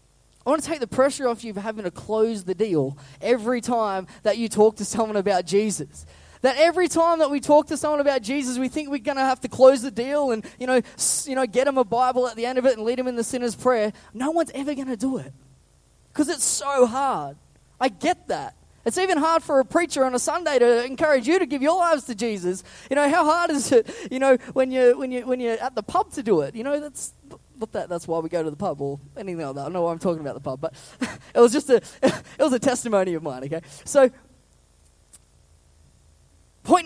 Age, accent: 20-39, Australian